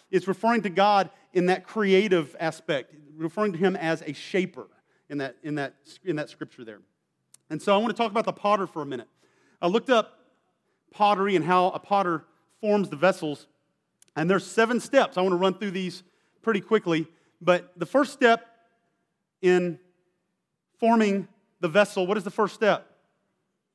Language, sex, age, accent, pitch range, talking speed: English, male, 40-59, American, 165-210 Hz, 175 wpm